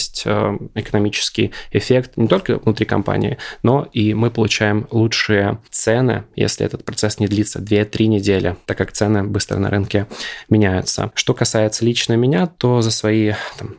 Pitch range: 105-120 Hz